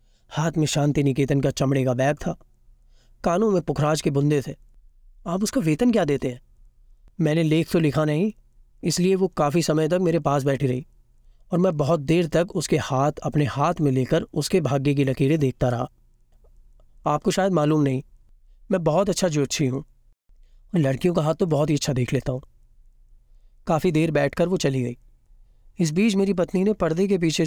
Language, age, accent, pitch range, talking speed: Hindi, 30-49, native, 135-190 Hz, 185 wpm